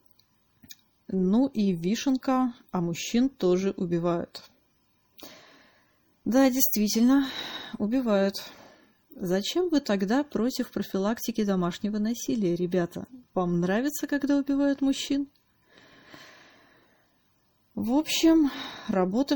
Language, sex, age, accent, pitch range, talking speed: Russian, female, 30-49, native, 180-250 Hz, 80 wpm